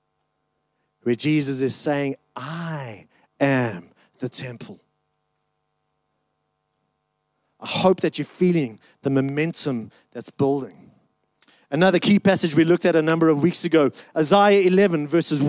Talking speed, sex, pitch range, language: 120 wpm, male, 155-210 Hz, English